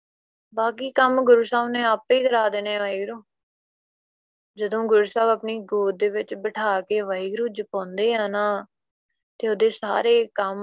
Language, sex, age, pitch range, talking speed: Punjabi, female, 20-39, 205-255 Hz, 140 wpm